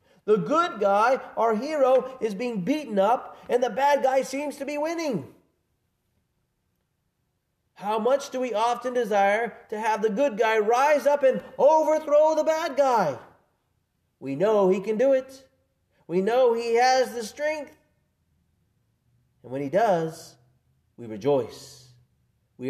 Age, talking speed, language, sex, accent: 30-49, 145 wpm, English, male, American